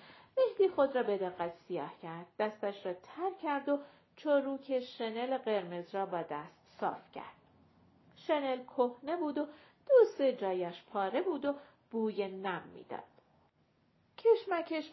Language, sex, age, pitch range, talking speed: Persian, female, 40-59, 205-295 Hz, 135 wpm